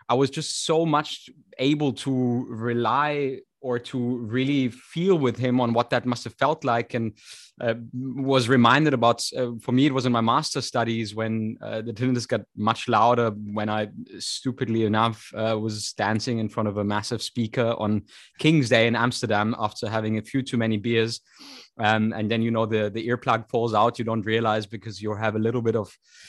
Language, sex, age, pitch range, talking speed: English, male, 20-39, 115-140 Hz, 200 wpm